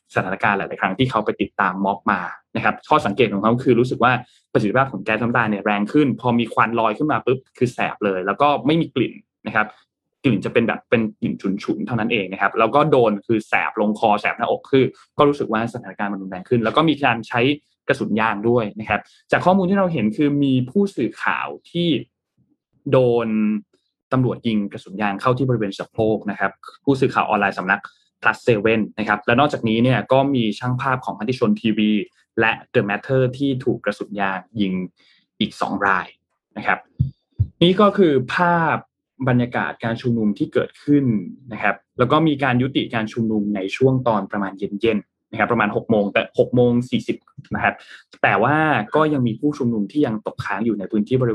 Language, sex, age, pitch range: Thai, male, 20-39, 105-135 Hz